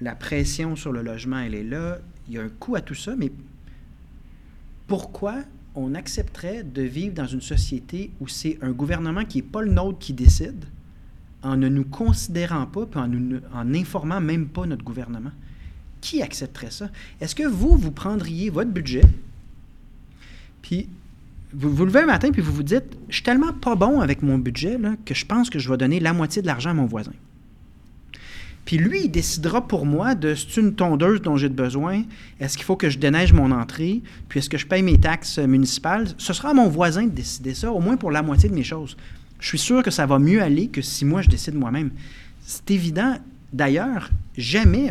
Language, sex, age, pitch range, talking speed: French, male, 40-59, 130-190 Hz, 210 wpm